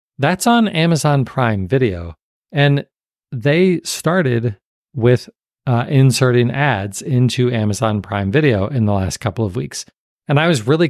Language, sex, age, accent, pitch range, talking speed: English, male, 40-59, American, 110-140 Hz, 145 wpm